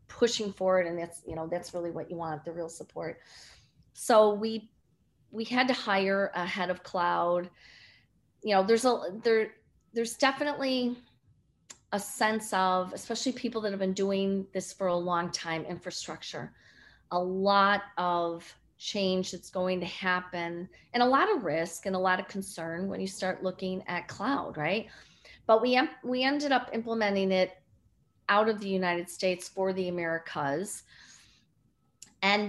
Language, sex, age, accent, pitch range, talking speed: English, female, 40-59, American, 175-215 Hz, 160 wpm